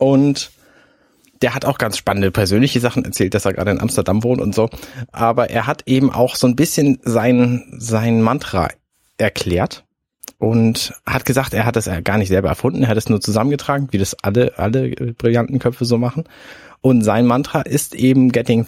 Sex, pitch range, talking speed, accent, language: male, 115-145 Hz, 185 wpm, German, German